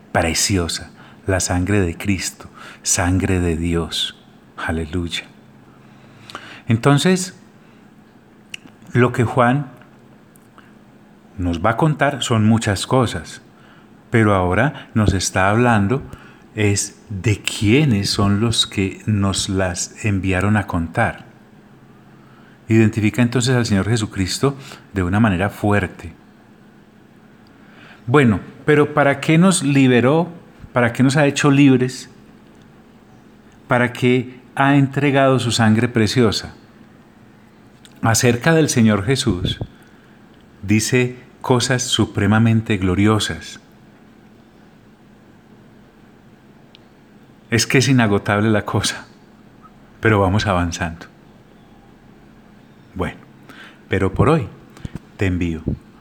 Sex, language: male, Italian